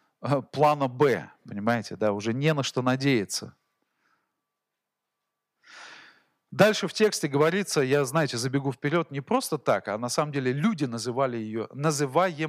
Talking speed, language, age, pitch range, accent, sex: 135 wpm, Russian, 40-59, 115-155 Hz, native, male